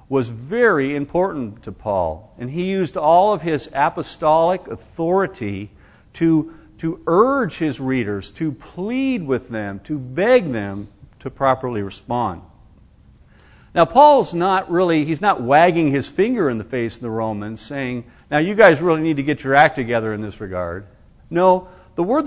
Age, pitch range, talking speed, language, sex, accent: 50-69, 115-180 Hz, 160 wpm, English, male, American